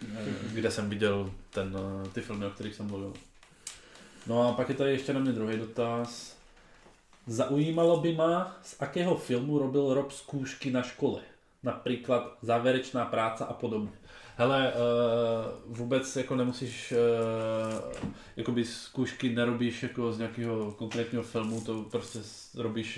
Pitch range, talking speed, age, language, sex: 105-120 Hz, 135 wpm, 20-39, Czech, male